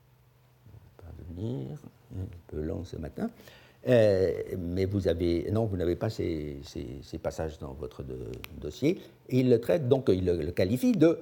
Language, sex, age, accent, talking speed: French, male, 60-79, French, 155 wpm